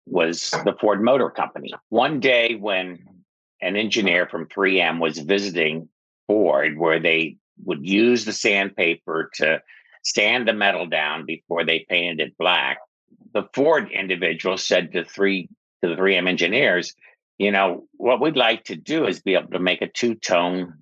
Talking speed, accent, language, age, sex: 160 wpm, American, English, 60-79, male